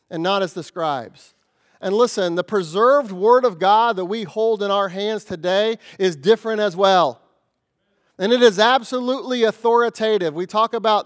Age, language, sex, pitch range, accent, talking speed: 30-49, English, male, 195-245 Hz, American, 170 wpm